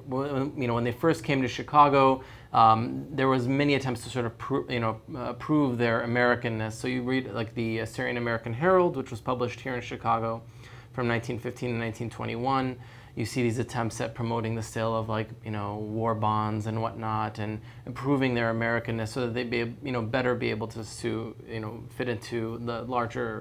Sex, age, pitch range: male, 30-49, 115-125 Hz